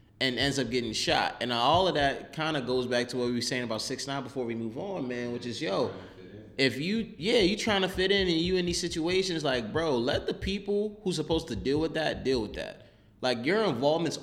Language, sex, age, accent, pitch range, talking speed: English, male, 20-39, American, 110-150 Hz, 245 wpm